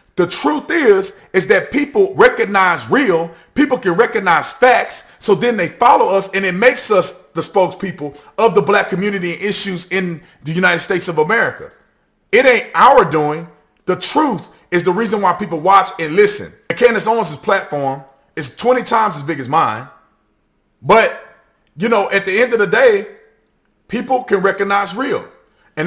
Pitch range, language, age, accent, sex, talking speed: 170-225 Hz, English, 30-49, American, male, 170 wpm